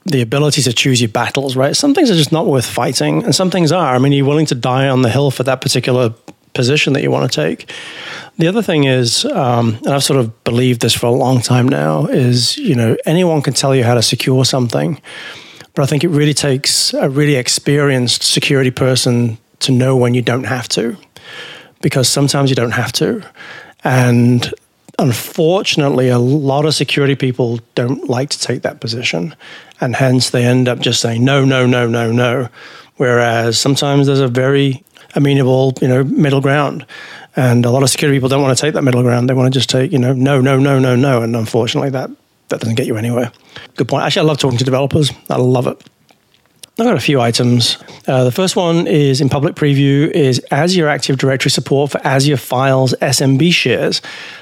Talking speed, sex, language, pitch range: 210 wpm, male, English, 125-145 Hz